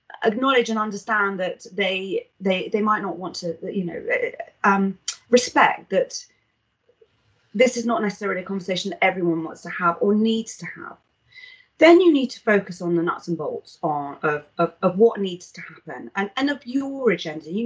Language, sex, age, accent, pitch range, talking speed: English, female, 30-49, British, 170-235 Hz, 185 wpm